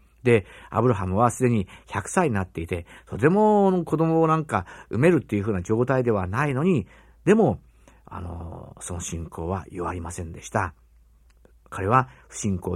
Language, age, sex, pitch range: Japanese, 50-69, male, 90-140 Hz